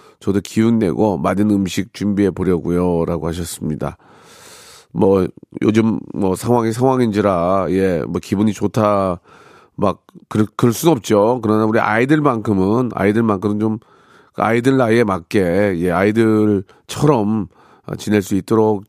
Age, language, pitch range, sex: 40-59, Korean, 95-120 Hz, male